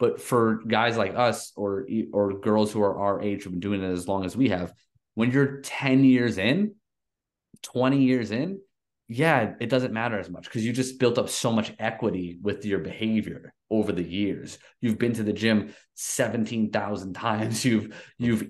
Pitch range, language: 100-115 Hz, English